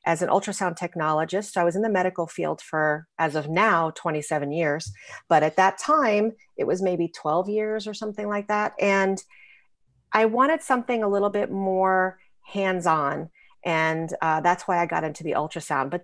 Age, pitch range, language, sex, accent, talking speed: 40-59, 165-215 Hz, English, female, American, 180 wpm